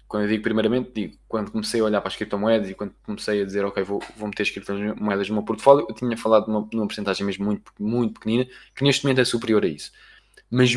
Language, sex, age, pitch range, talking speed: Portuguese, male, 20-39, 105-125 Hz, 240 wpm